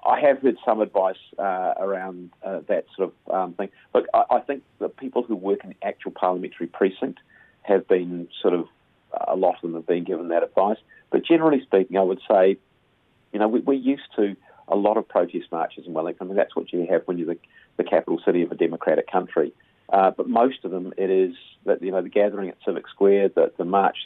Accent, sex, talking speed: Australian, male, 230 wpm